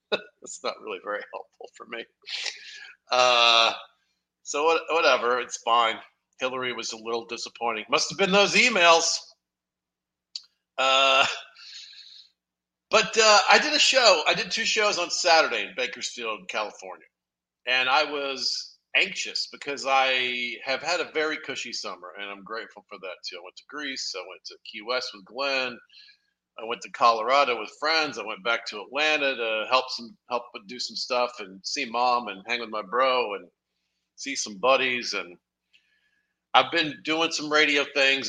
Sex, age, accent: male, 50-69, American